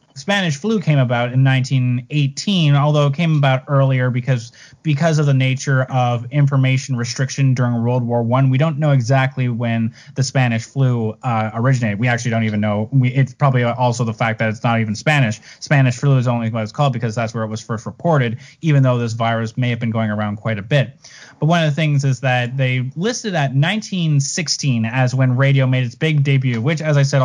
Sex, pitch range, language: male, 120-145 Hz, English